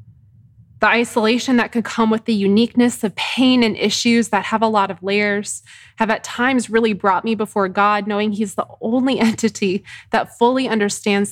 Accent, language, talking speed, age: American, English, 180 wpm, 20-39